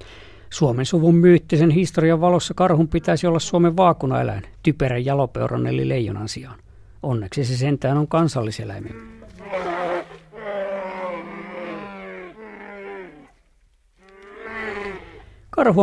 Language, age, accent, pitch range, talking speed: Finnish, 50-69, native, 110-175 Hz, 80 wpm